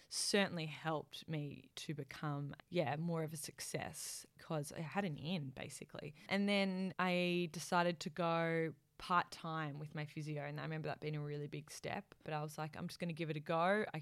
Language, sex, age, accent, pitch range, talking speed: English, female, 20-39, Australian, 150-180 Hz, 200 wpm